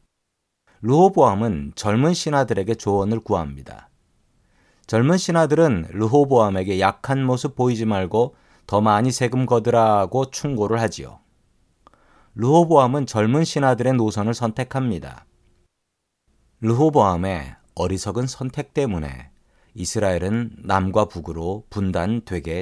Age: 40-59